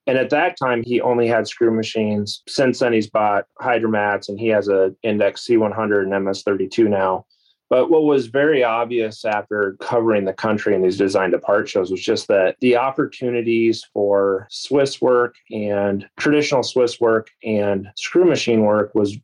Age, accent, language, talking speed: 30-49, American, English, 165 wpm